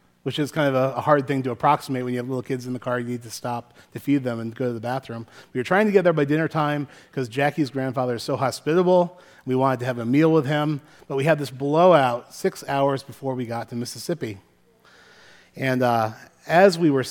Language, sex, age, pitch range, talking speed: English, male, 30-49, 120-155 Hz, 240 wpm